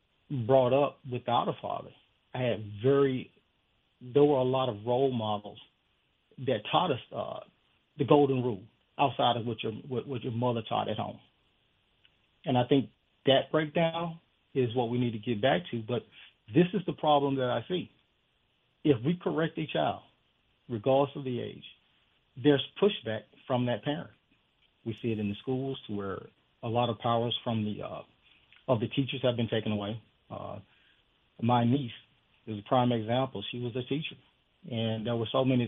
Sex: male